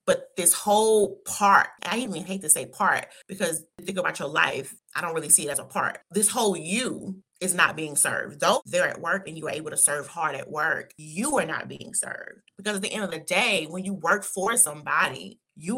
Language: English